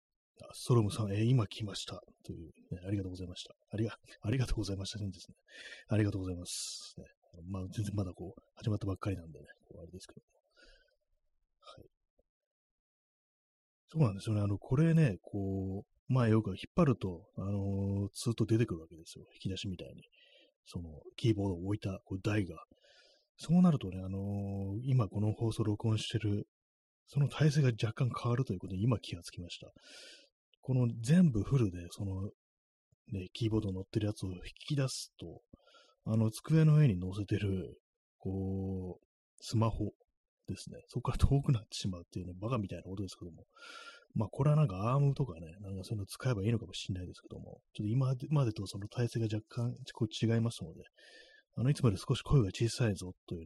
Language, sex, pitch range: Japanese, male, 95-120 Hz